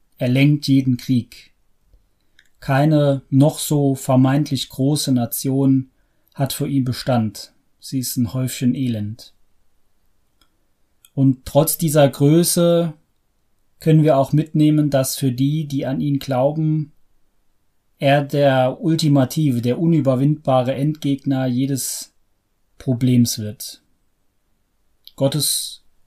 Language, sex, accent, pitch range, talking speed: German, male, German, 115-145 Hz, 100 wpm